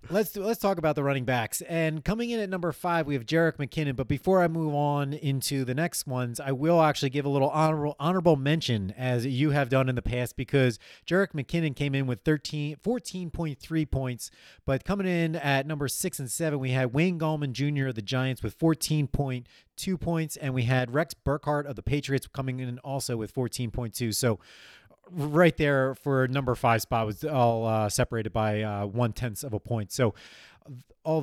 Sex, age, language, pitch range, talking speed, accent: male, 30-49, English, 125-155 Hz, 205 wpm, American